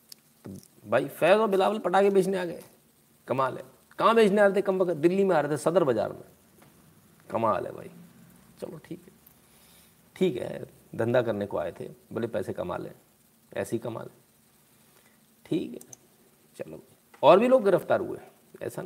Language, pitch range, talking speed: Hindi, 145-200 Hz, 160 wpm